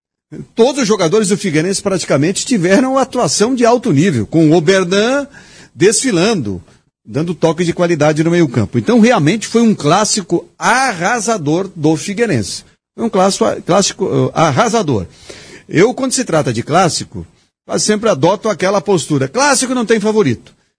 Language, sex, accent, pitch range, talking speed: Portuguese, male, Brazilian, 145-210 Hz, 150 wpm